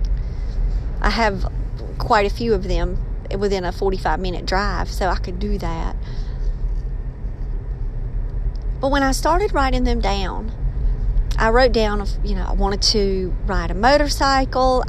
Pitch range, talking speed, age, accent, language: 170-235 Hz, 135 wpm, 40-59, American, English